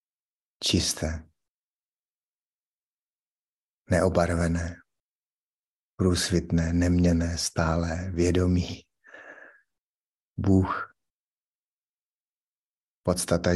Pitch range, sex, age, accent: 85-95 Hz, male, 60-79, native